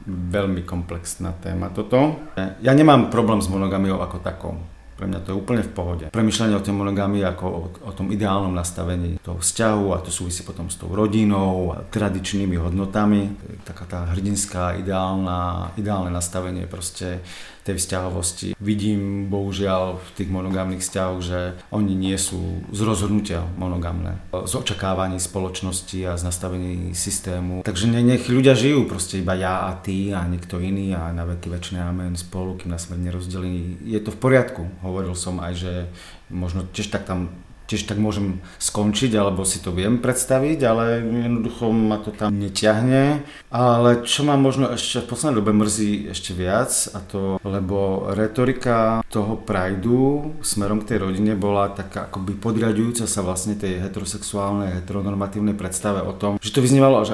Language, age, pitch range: Czech, 40-59, 90-110 Hz